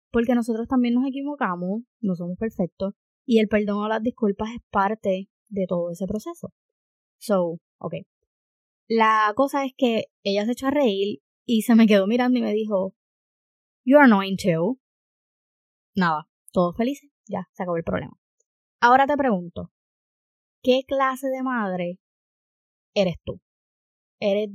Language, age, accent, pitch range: Spanish, 20-39, American, 190-240 Hz